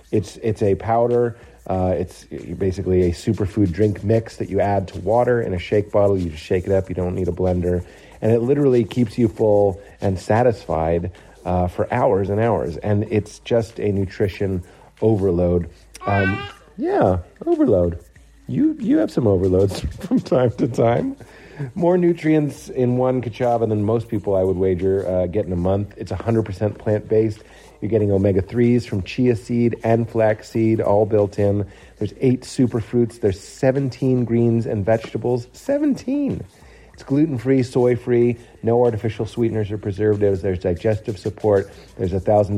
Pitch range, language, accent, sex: 95-120 Hz, English, American, male